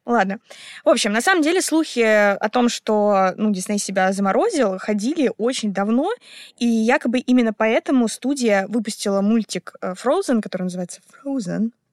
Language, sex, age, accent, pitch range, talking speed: Russian, female, 20-39, native, 200-250 Hz, 140 wpm